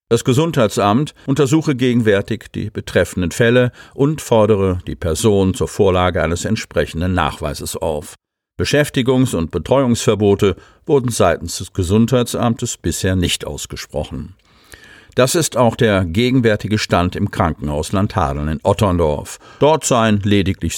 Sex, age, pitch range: male, 50-69, 95-125 Hz